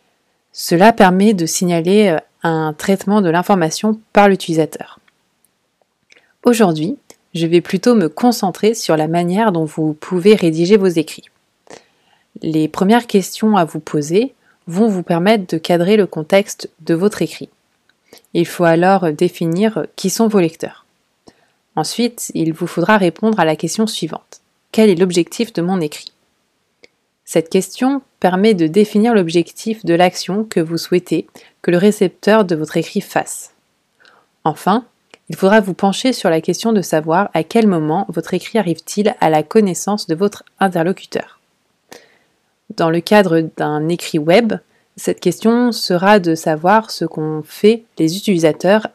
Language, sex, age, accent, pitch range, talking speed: French, female, 30-49, French, 165-215 Hz, 145 wpm